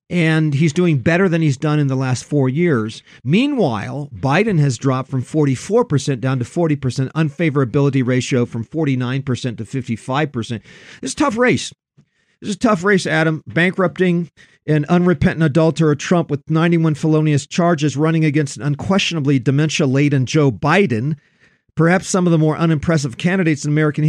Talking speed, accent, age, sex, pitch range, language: 155 wpm, American, 50-69, male, 135-170 Hz, English